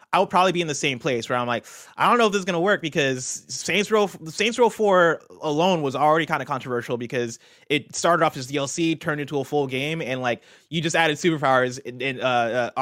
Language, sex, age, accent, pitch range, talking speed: English, male, 20-39, American, 120-160 Hz, 235 wpm